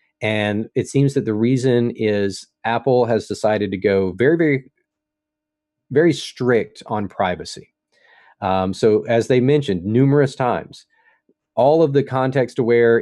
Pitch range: 105-140 Hz